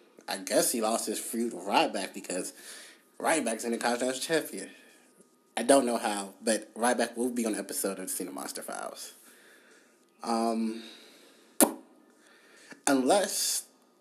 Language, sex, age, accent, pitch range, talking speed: English, male, 30-49, American, 110-150 Hz, 145 wpm